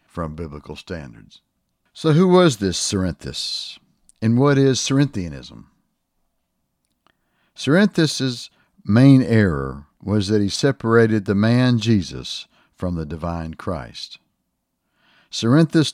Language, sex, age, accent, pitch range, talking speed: English, male, 60-79, American, 85-120 Hz, 100 wpm